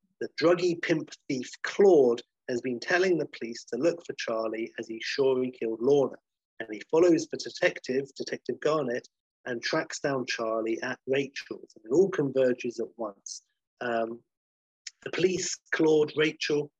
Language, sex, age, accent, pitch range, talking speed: English, male, 30-49, British, 115-145 Hz, 155 wpm